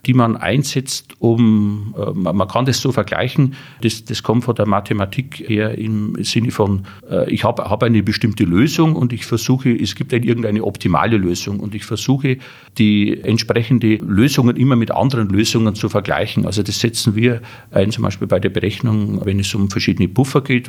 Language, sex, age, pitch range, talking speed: German, male, 40-59, 105-120 Hz, 180 wpm